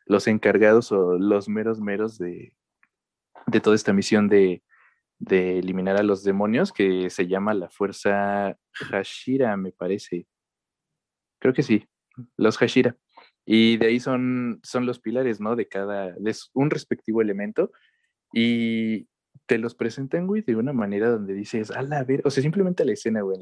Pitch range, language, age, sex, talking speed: 100-120 Hz, Spanish, 20-39, male, 165 wpm